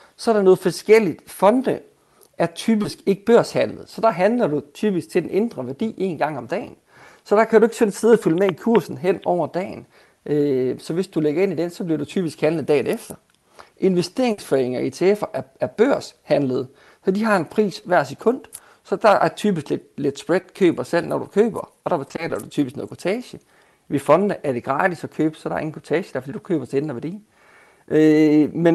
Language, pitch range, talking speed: Danish, 150-205 Hz, 210 wpm